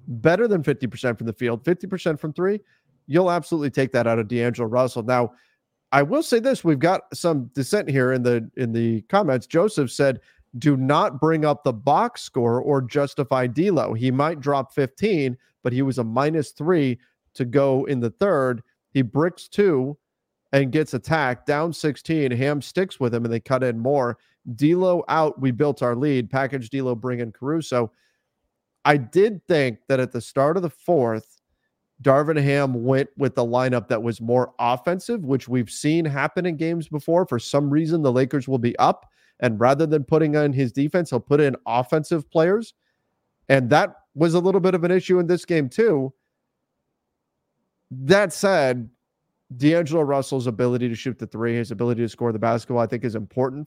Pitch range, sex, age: 125-160 Hz, male, 40-59